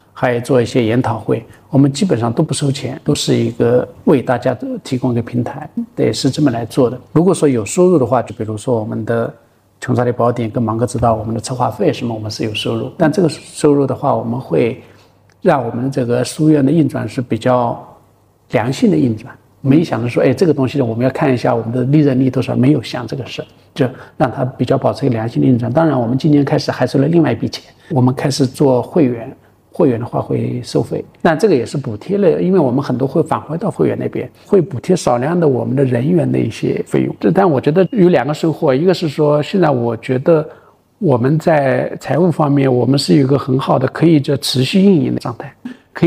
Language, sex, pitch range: Chinese, male, 125-160 Hz